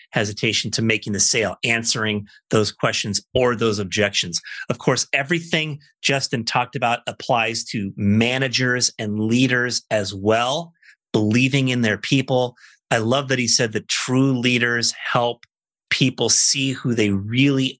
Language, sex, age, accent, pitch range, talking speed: English, male, 30-49, American, 110-135 Hz, 140 wpm